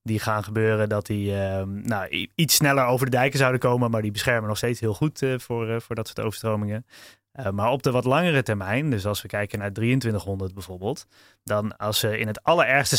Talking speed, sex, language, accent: 220 wpm, male, Dutch, Dutch